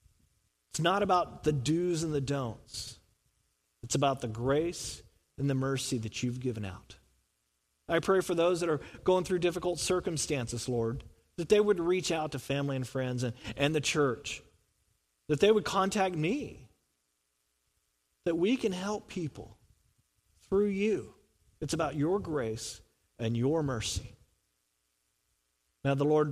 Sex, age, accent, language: male, 40-59, American, English